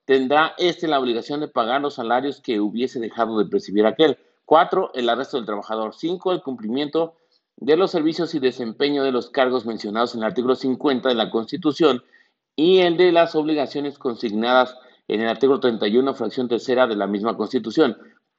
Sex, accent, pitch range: male, Mexican, 120-155 Hz